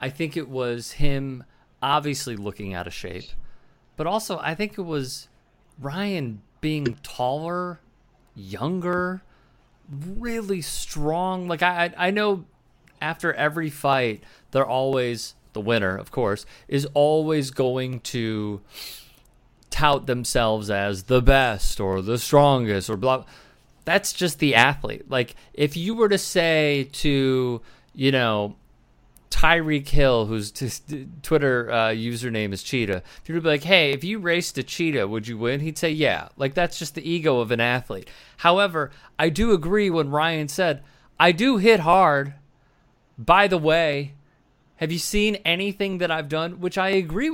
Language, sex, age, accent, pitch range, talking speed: English, male, 30-49, American, 125-170 Hz, 150 wpm